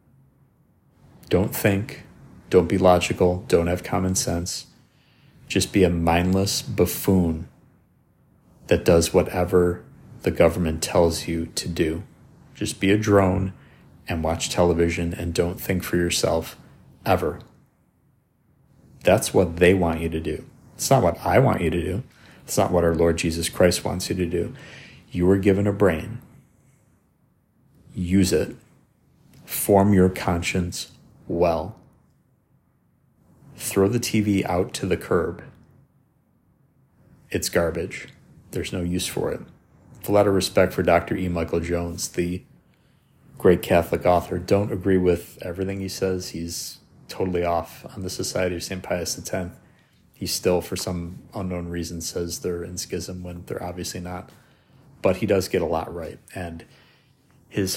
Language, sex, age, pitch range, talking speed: English, male, 40-59, 85-100 Hz, 145 wpm